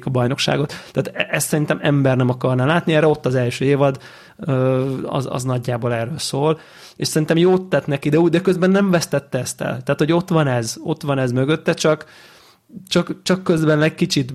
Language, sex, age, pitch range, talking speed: Hungarian, male, 20-39, 130-155 Hz, 200 wpm